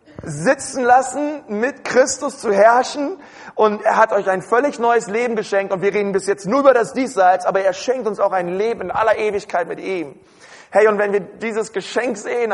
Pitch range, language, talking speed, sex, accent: 155-220 Hz, German, 205 wpm, male, German